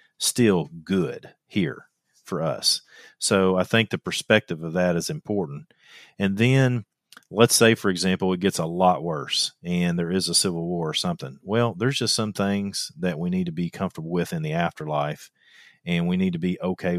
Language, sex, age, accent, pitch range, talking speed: English, male, 40-59, American, 85-115 Hz, 190 wpm